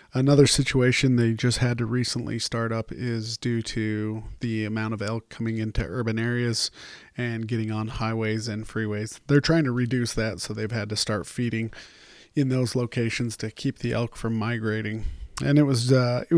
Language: English